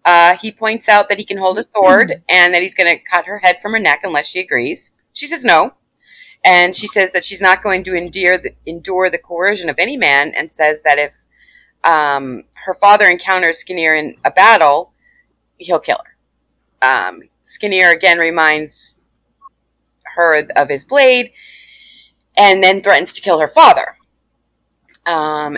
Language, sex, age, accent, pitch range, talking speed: English, female, 30-49, American, 170-240 Hz, 170 wpm